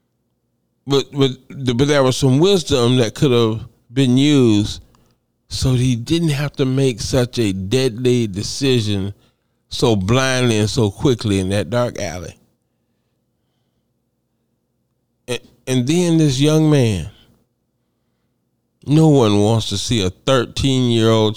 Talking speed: 125 wpm